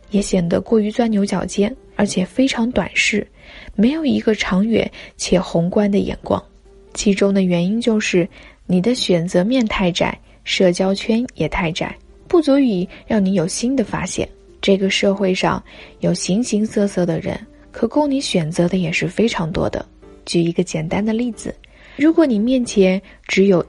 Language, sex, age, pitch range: Chinese, female, 20-39, 180-240 Hz